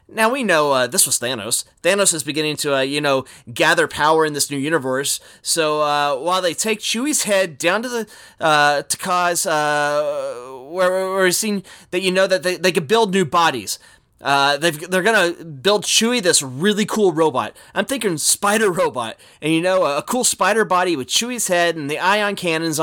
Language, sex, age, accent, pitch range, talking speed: English, male, 30-49, American, 160-220 Hz, 200 wpm